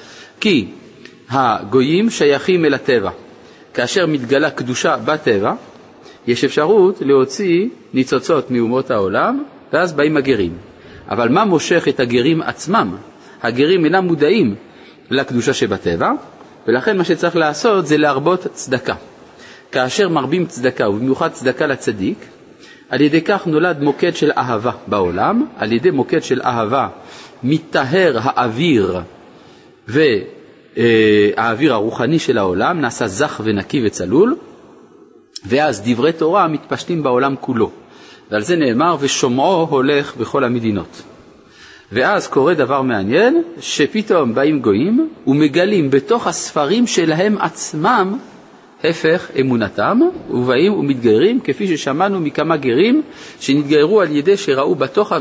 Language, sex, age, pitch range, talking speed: Hebrew, male, 40-59, 130-195 Hz, 110 wpm